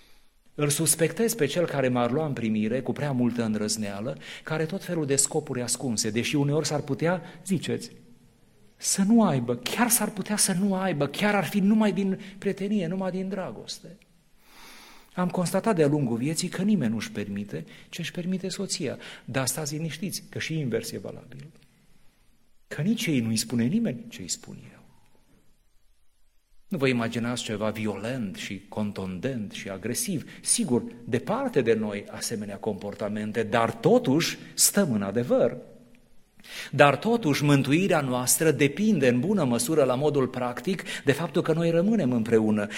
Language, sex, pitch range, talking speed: Romanian, male, 125-180 Hz, 155 wpm